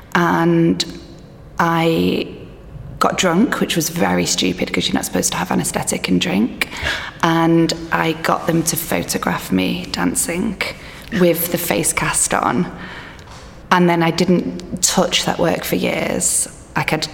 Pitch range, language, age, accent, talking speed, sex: 160-185 Hz, English, 20-39, British, 140 wpm, female